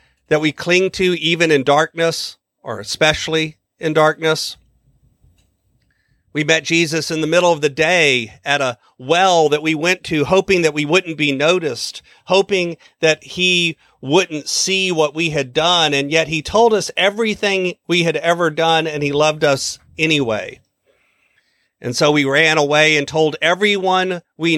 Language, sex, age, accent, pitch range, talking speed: English, male, 40-59, American, 145-180 Hz, 160 wpm